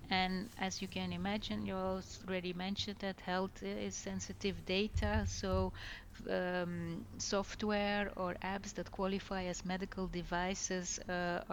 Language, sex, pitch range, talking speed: English, female, 170-200 Hz, 125 wpm